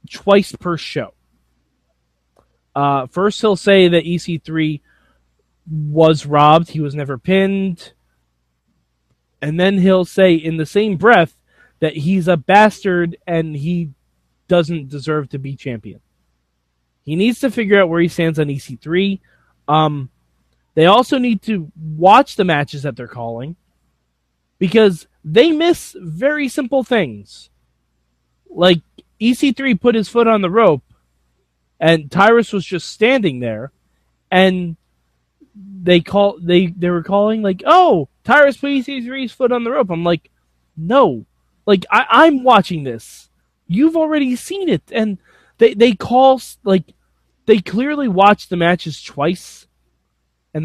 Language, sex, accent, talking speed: English, male, American, 135 wpm